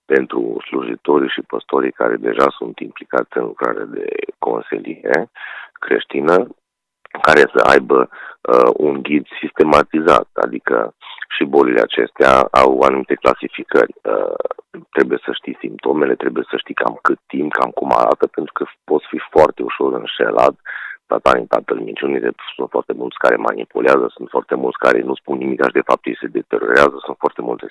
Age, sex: 40-59, male